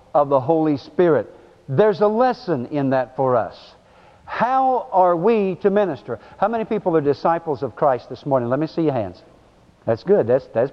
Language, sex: English, male